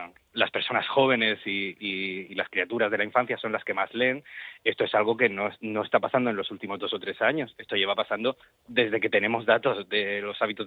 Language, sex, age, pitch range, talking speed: Spanish, male, 20-39, 105-135 Hz, 230 wpm